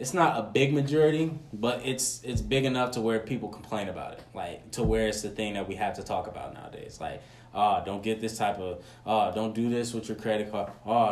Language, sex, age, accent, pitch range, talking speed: English, male, 10-29, American, 105-125 Hz, 245 wpm